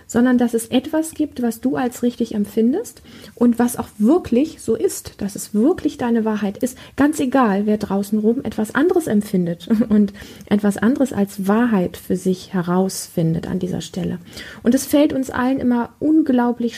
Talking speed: 170 wpm